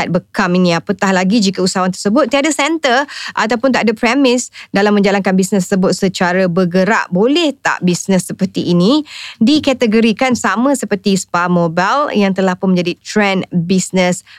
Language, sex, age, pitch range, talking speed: Indonesian, female, 20-39, 180-250 Hz, 145 wpm